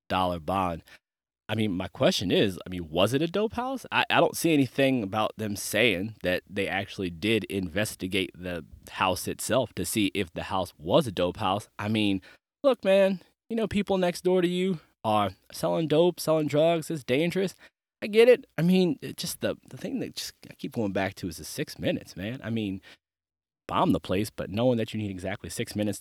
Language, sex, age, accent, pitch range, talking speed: English, male, 20-39, American, 95-125 Hz, 210 wpm